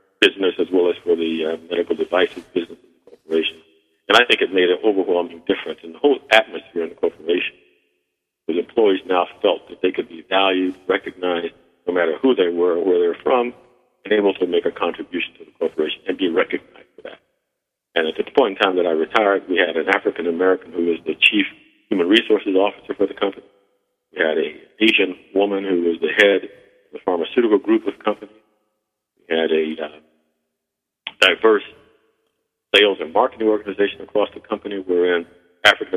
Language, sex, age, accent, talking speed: English, male, 50-69, American, 190 wpm